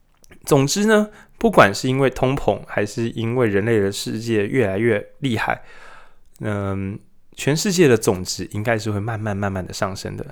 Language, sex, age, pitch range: Chinese, male, 20-39, 110-155 Hz